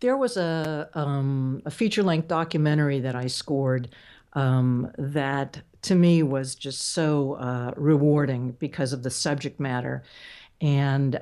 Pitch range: 140-175 Hz